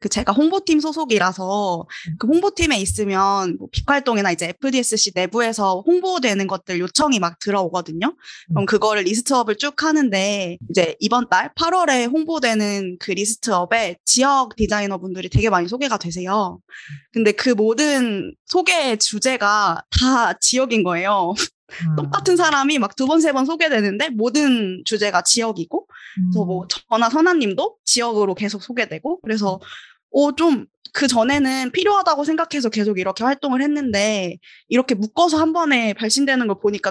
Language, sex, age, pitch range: Korean, female, 20-39, 195-270 Hz